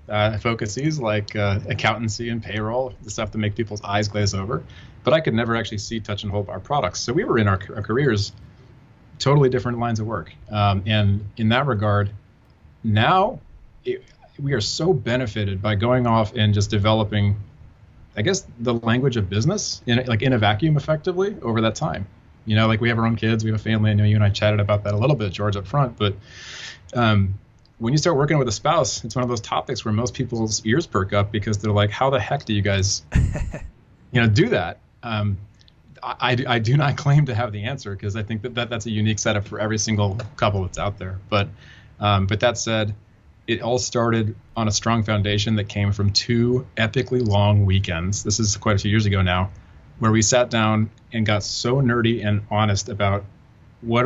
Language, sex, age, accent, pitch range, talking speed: English, male, 30-49, American, 105-120 Hz, 210 wpm